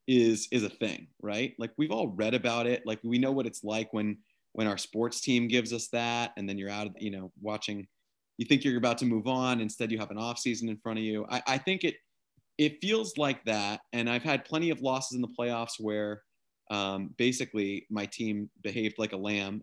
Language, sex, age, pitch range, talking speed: English, male, 30-49, 105-125 Hz, 230 wpm